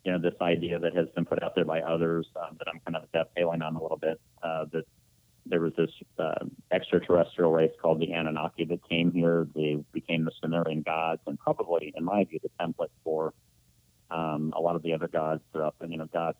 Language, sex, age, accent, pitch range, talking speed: English, male, 40-59, American, 80-85 Hz, 225 wpm